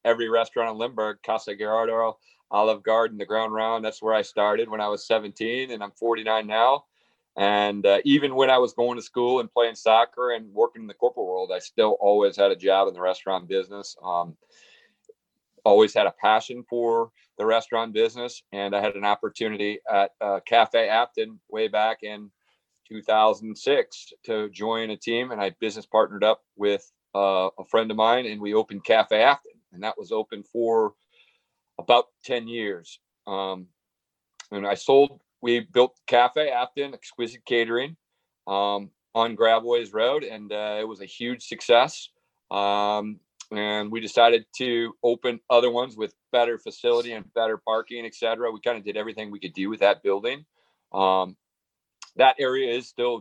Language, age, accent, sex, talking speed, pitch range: English, 40-59, American, male, 175 wpm, 105-120 Hz